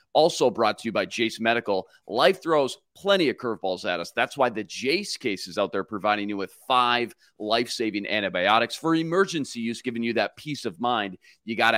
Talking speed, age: 200 wpm, 30-49